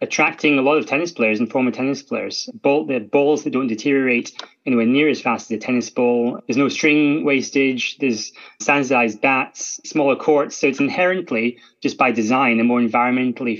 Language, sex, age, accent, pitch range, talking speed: English, male, 30-49, British, 120-145 Hz, 190 wpm